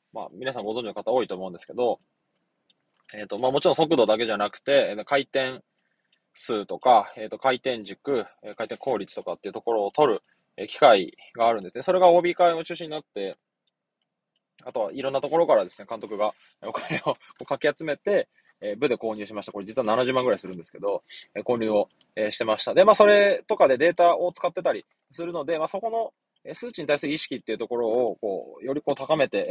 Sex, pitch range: male, 125-185 Hz